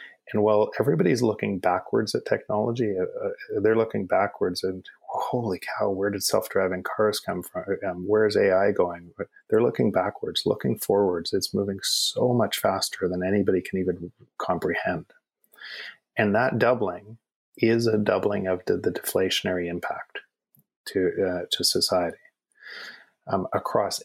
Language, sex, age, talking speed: English, male, 30-49, 140 wpm